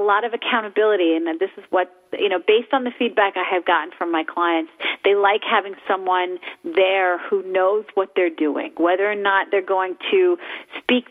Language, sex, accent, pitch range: English, female, American, 185-230 Hz